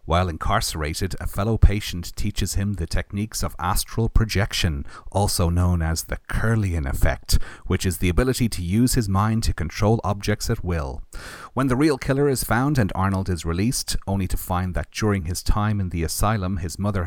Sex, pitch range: male, 85-105 Hz